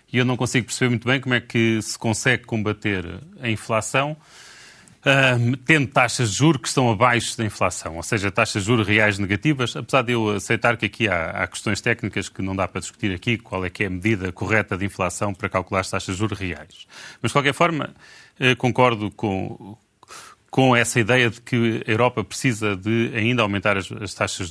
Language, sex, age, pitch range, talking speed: Portuguese, male, 30-49, 105-155 Hz, 205 wpm